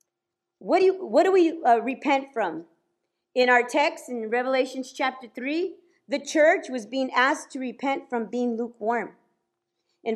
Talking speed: 160 wpm